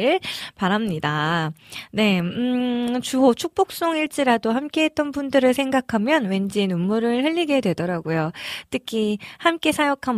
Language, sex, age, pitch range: Korean, female, 20-39, 180-250 Hz